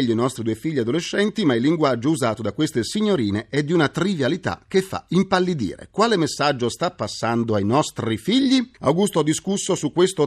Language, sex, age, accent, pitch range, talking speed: Italian, male, 40-59, native, 110-150 Hz, 180 wpm